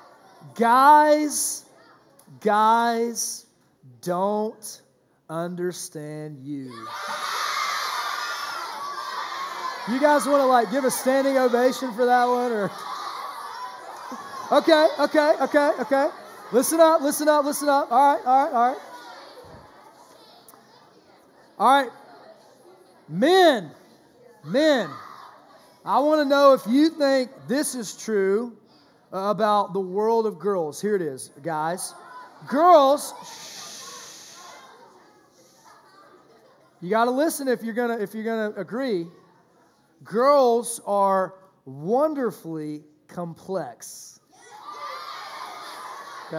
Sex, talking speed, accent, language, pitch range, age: male, 95 wpm, American, English, 195-285 Hz, 40-59